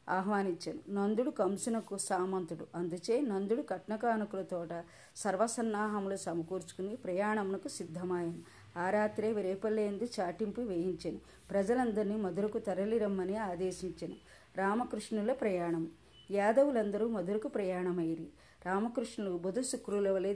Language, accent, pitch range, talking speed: Telugu, native, 180-220 Hz, 90 wpm